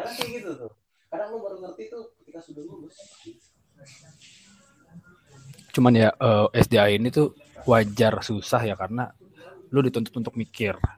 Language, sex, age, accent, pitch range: Indonesian, male, 20-39, native, 110-140 Hz